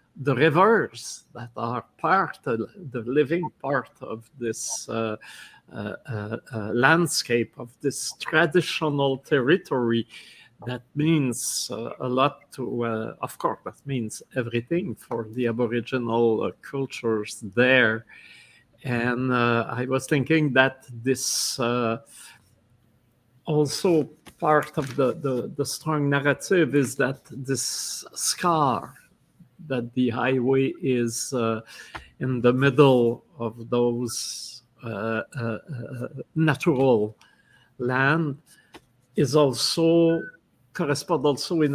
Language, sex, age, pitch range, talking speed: French, male, 50-69, 120-150 Hz, 110 wpm